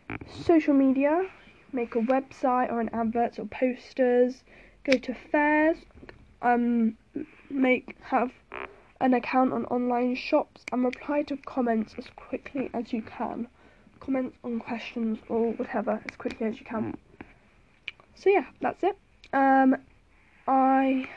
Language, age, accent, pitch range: English, 10-29, British, 235-270 Hz